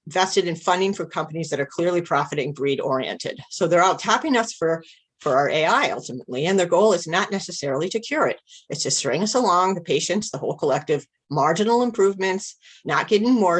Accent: American